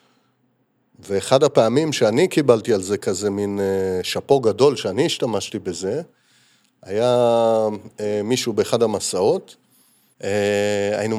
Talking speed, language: 105 wpm, Hebrew